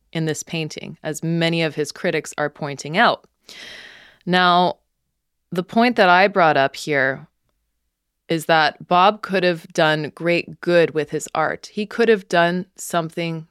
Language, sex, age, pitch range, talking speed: English, female, 20-39, 160-195 Hz, 155 wpm